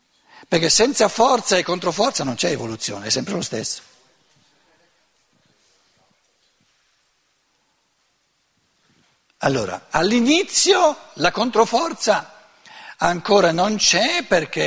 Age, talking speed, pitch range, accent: 60-79, 80 wpm, 175-260 Hz, native